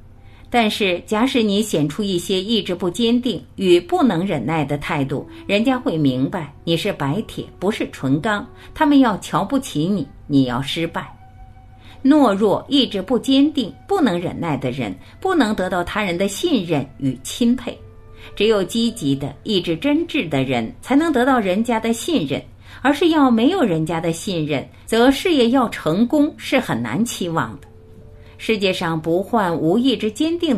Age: 50-69